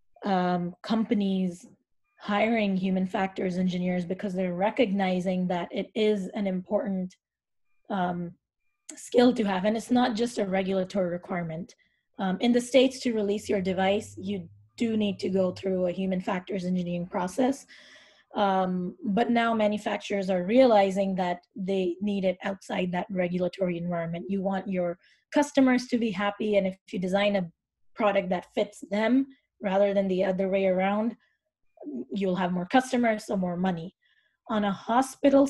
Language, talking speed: English, 150 wpm